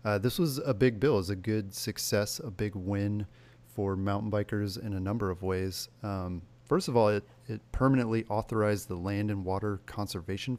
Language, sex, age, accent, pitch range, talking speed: English, male, 30-49, American, 100-120 Hz, 200 wpm